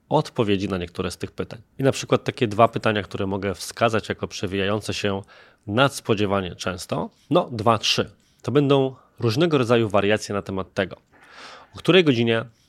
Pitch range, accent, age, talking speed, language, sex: 100-130 Hz, native, 20-39, 160 wpm, Polish, male